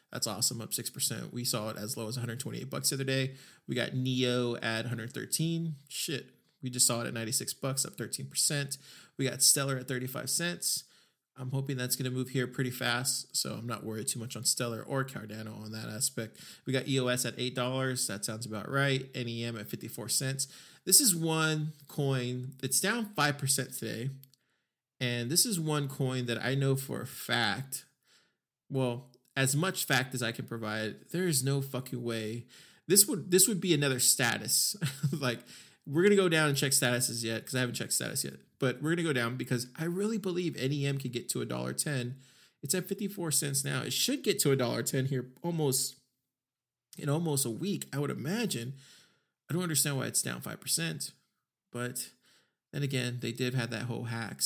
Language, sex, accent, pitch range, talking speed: English, male, American, 120-145 Hz, 195 wpm